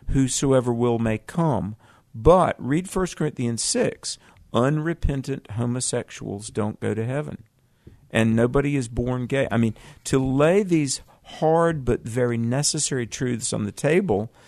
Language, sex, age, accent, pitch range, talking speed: English, male, 50-69, American, 115-145 Hz, 135 wpm